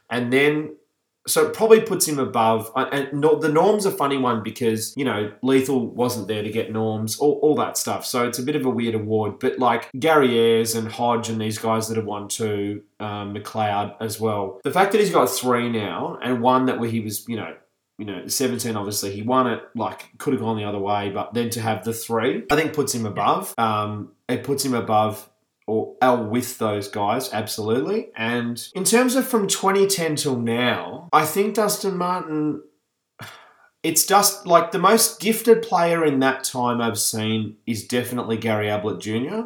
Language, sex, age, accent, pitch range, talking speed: English, male, 20-39, Australian, 110-145 Hz, 195 wpm